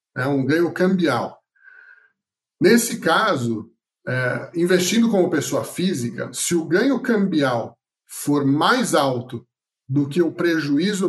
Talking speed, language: 115 wpm, Portuguese